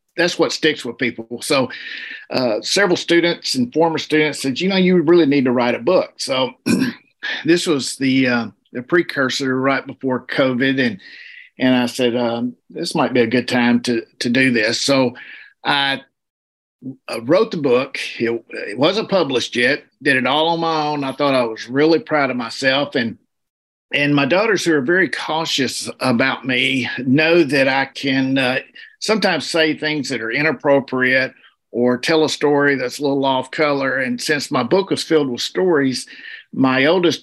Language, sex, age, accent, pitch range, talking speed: English, male, 50-69, American, 125-155 Hz, 180 wpm